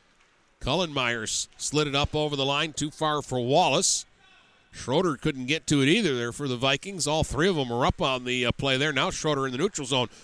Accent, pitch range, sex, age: American, 130-160 Hz, male, 50-69